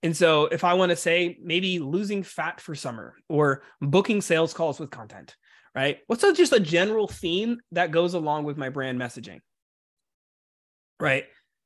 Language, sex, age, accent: English, male, 30-49, American